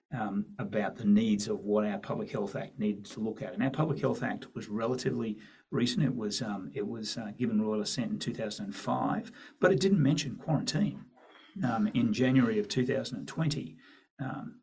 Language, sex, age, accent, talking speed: English, male, 40-59, Australian, 205 wpm